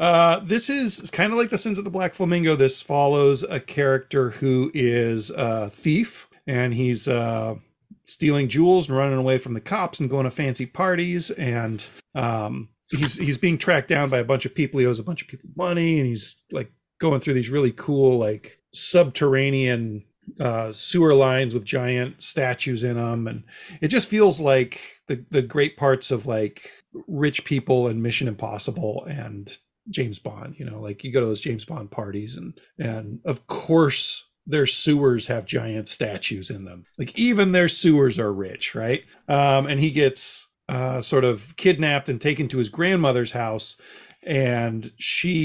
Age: 40-59